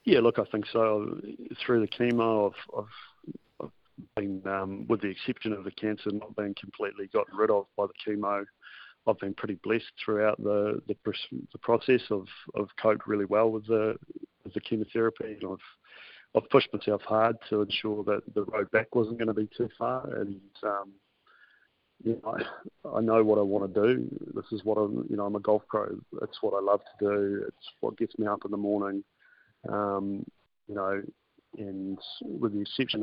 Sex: male